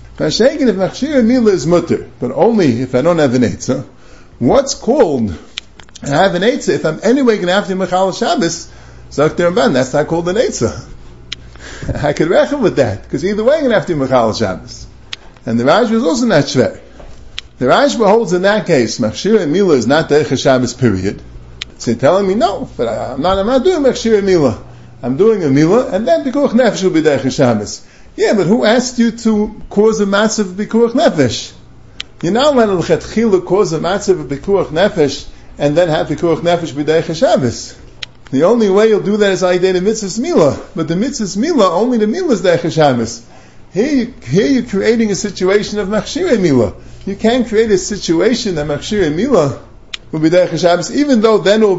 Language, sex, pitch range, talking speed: English, male, 150-220 Hz, 200 wpm